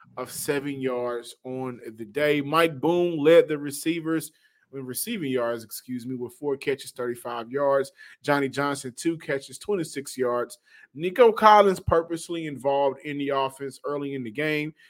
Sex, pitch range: male, 130-160 Hz